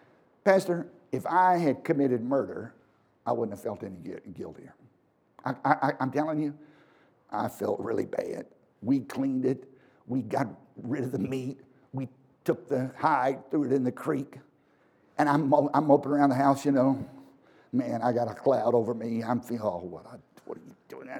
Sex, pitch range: male, 135-195 Hz